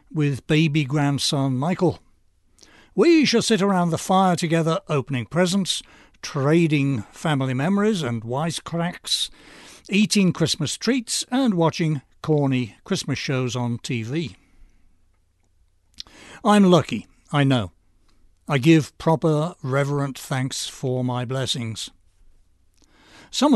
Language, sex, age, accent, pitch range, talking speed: English, male, 60-79, British, 115-175 Hz, 105 wpm